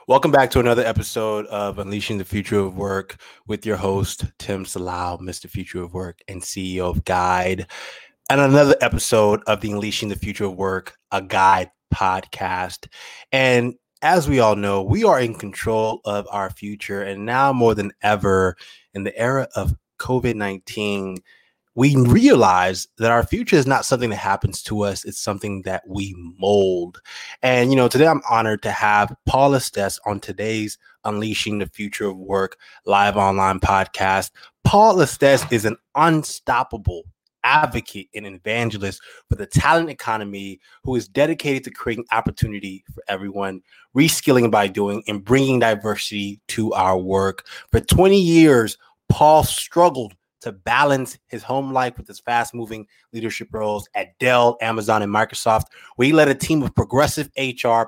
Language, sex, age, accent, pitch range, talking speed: English, male, 20-39, American, 100-125 Hz, 160 wpm